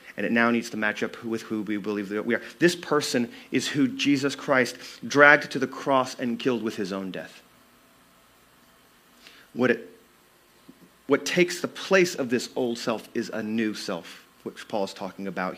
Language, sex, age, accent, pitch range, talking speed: English, male, 40-59, American, 100-160 Hz, 185 wpm